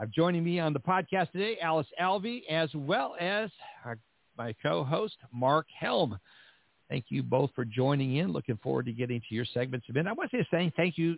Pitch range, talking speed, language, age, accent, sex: 125-170 Hz, 210 wpm, English, 60-79, American, male